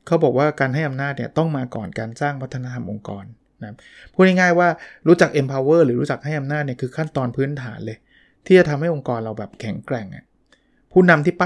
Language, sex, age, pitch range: Thai, male, 20-39, 115-145 Hz